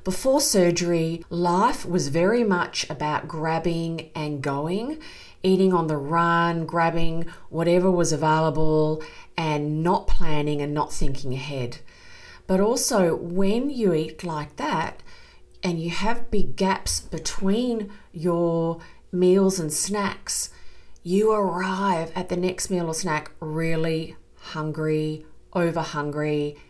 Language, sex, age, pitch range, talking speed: English, female, 40-59, 150-185 Hz, 120 wpm